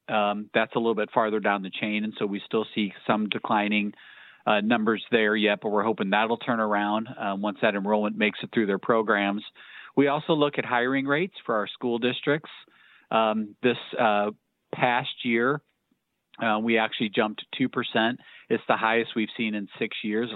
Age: 40-59